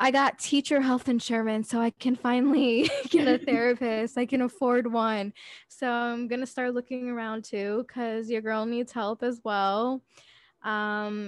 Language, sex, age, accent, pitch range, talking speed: English, female, 10-29, American, 200-235 Hz, 170 wpm